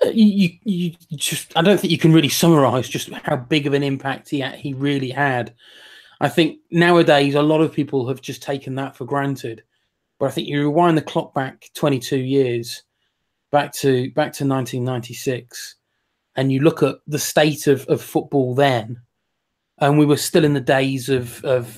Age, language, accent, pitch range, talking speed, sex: 20-39, English, British, 130-155 Hz, 185 wpm, male